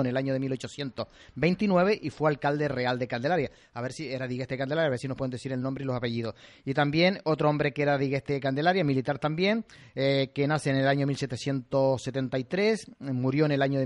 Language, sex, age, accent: Spanish, male, 30-49, Mexican